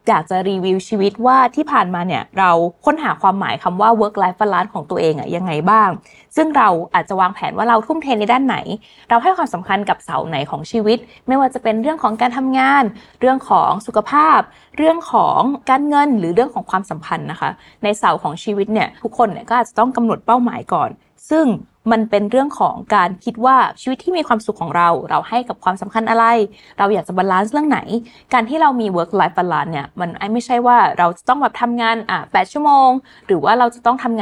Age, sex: 20-39, female